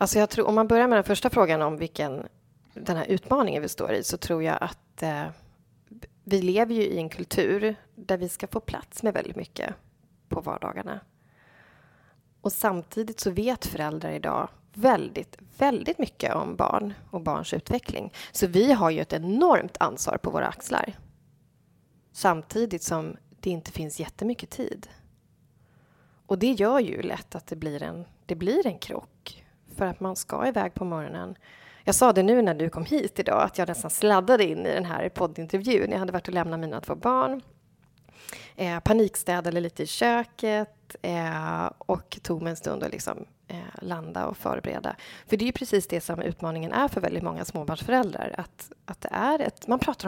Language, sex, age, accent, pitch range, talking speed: Swedish, female, 30-49, native, 165-225 Hz, 185 wpm